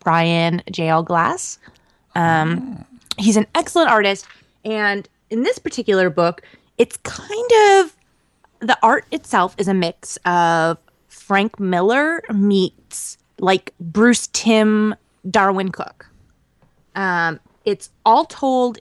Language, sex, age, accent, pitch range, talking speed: English, female, 20-39, American, 175-235 Hz, 110 wpm